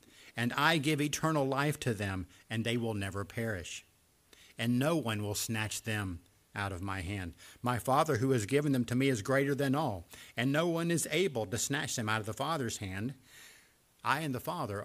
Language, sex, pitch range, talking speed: English, male, 105-145 Hz, 205 wpm